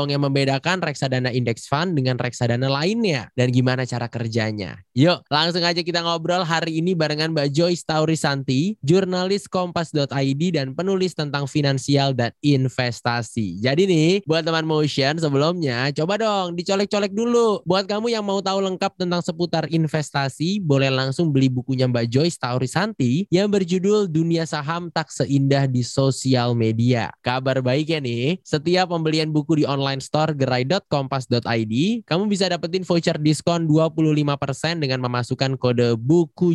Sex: male